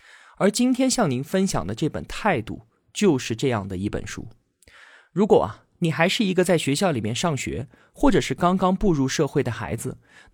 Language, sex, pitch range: Chinese, male, 120-195 Hz